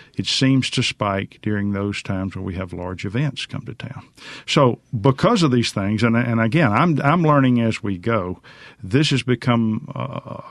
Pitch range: 100-125 Hz